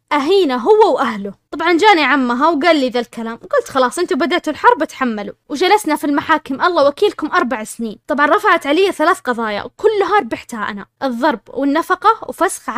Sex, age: female, 20-39